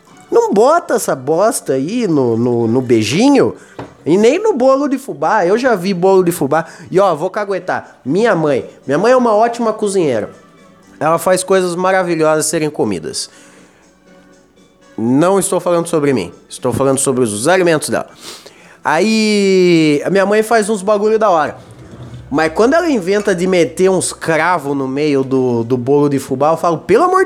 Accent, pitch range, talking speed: Brazilian, 140-215 Hz, 170 wpm